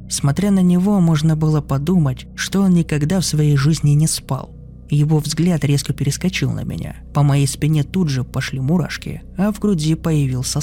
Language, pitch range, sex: Russian, 135-170 Hz, male